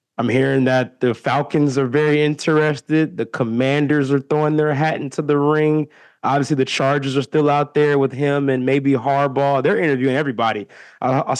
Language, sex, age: English, male, 20-39